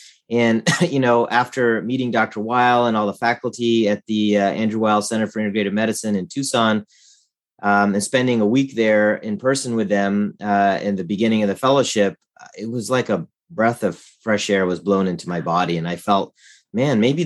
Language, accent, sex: English, American, male